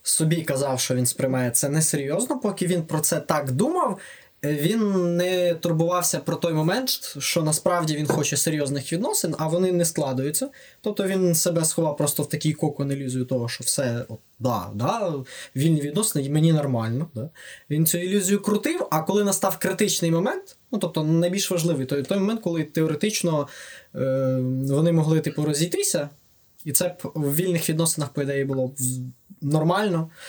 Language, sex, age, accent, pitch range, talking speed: Ukrainian, male, 20-39, native, 140-175 Hz, 155 wpm